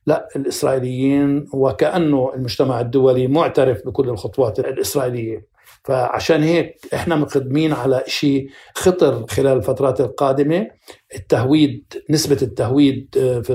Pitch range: 130-160 Hz